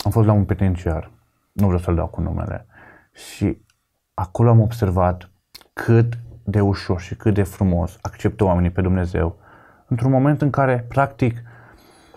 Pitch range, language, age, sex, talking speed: 95-115 Hz, Romanian, 30-49, male, 155 wpm